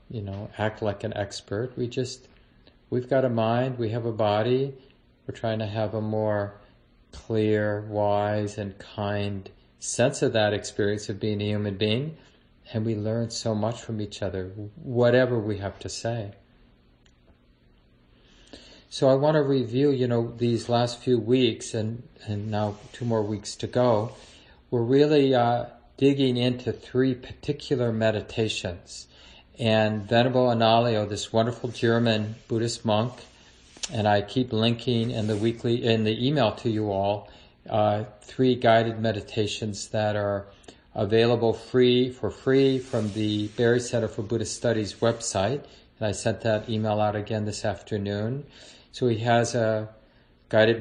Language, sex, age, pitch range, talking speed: English, male, 40-59, 105-120 Hz, 150 wpm